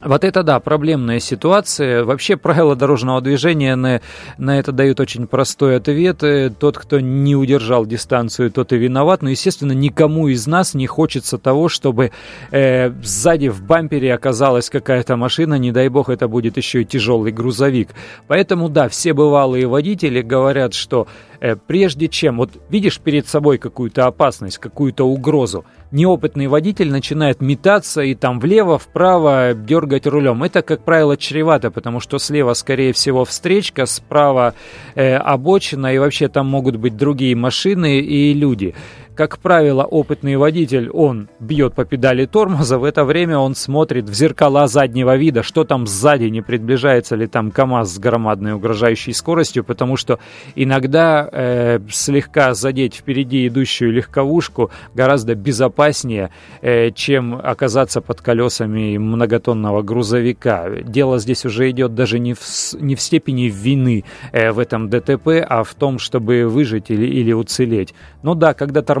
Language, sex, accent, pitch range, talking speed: Russian, male, native, 120-145 Hz, 150 wpm